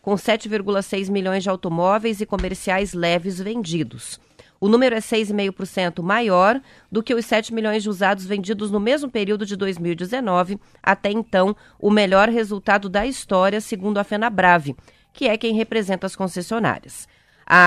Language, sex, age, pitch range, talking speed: Portuguese, female, 30-49, 190-230 Hz, 155 wpm